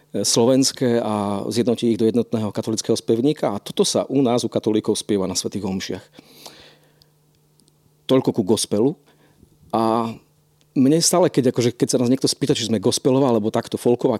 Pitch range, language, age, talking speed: 110-135 Hz, Slovak, 40-59, 160 wpm